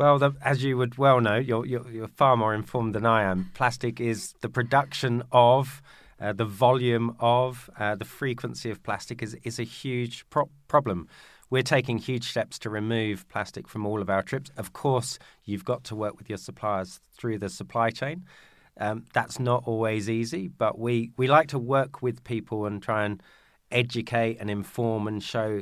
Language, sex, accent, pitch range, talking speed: English, male, British, 105-125 Hz, 190 wpm